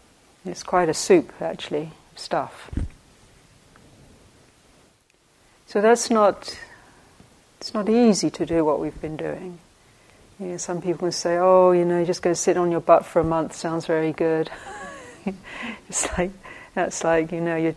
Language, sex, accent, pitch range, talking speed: English, female, British, 160-185 Hz, 160 wpm